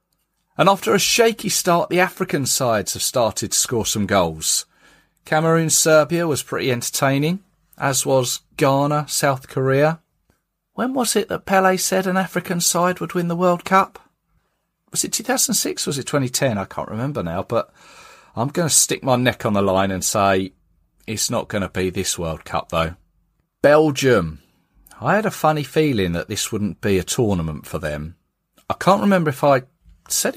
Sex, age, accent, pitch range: male, 40-59, British, 95-155 Hz